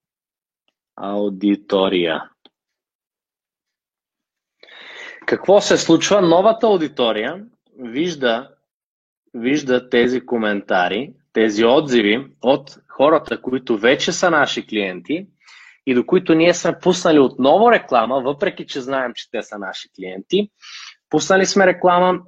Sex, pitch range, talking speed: male, 120-160 Hz, 100 wpm